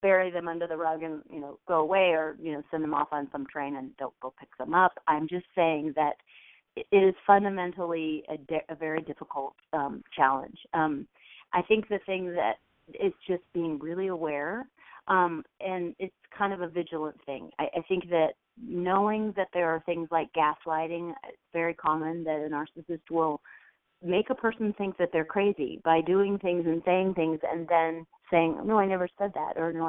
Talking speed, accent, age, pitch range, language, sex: 200 wpm, American, 40-59, 160-185 Hz, English, female